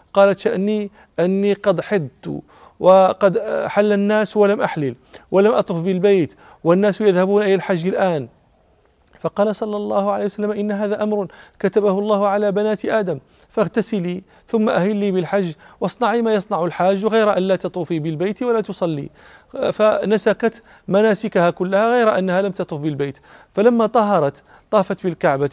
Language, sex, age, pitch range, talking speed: Arabic, male, 40-59, 165-205 Hz, 140 wpm